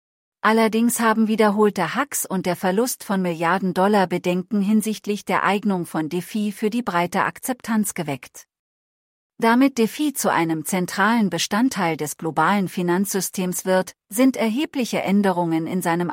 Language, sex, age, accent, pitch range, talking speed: English, female, 40-59, German, 175-220 Hz, 125 wpm